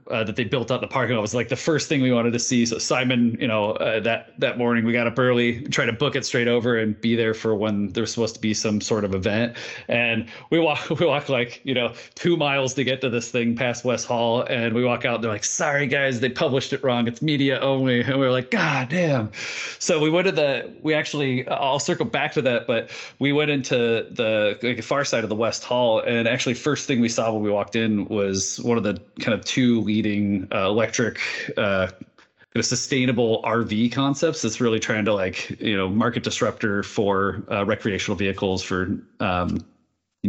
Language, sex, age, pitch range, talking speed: English, male, 30-49, 105-130 Hz, 230 wpm